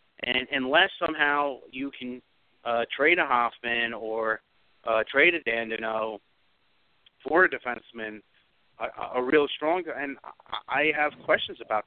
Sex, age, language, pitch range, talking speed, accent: male, 40-59, English, 125-150 Hz, 130 wpm, American